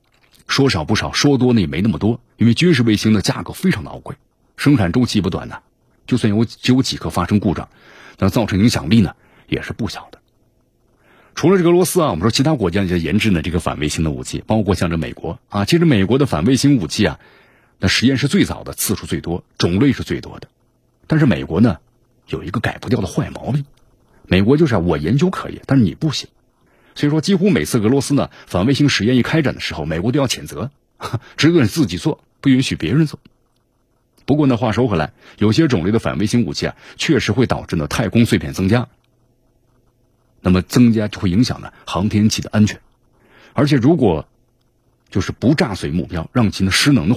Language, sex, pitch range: Chinese, male, 100-130 Hz